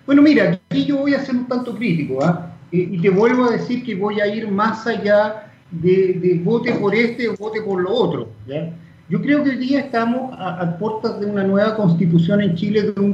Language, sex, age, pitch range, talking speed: Spanish, male, 40-59, 185-235 Hz, 220 wpm